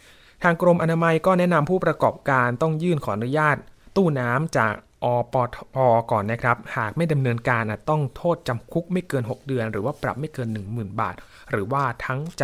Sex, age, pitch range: male, 20-39, 120-160 Hz